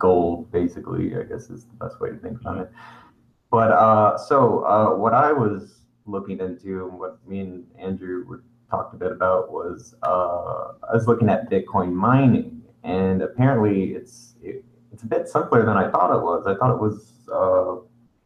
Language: English